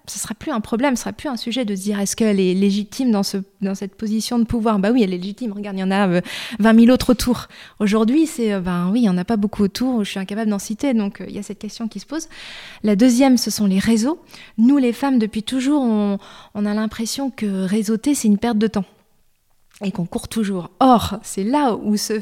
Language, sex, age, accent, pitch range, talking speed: French, female, 20-39, French, 200-235 Hz, 260 wpm